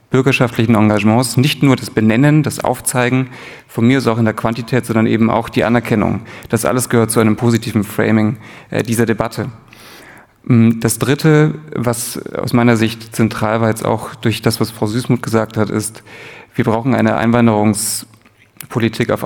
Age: 30-49